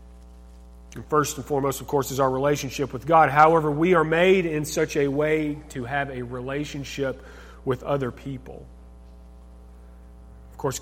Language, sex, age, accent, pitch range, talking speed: English, male, 40-59, American, 105-160 Hz, 150 wpm